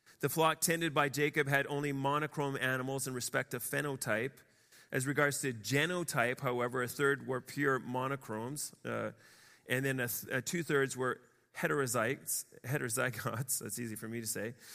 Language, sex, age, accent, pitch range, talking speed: English, male, 30-49, American, 125-150 Hz, 140 wpm